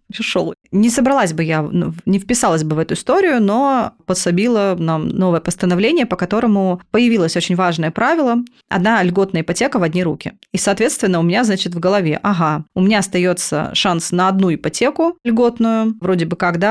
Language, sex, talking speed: Russian, female, 170 wpm